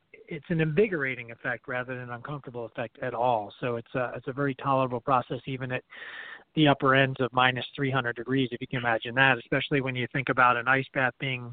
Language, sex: English, male